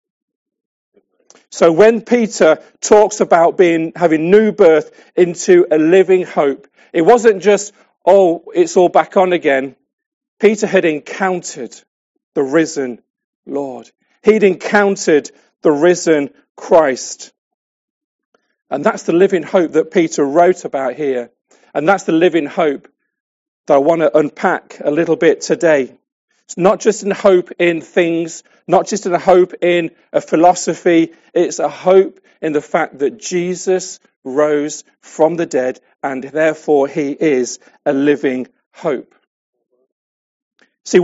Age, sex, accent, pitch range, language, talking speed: 40-59, male, British, 160-220 Hz, English, 135 wpm